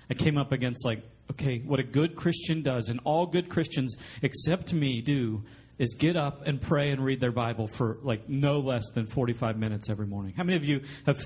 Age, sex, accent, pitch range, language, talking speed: 40-59, male, American, 125-185 Hz, English, 220 wpm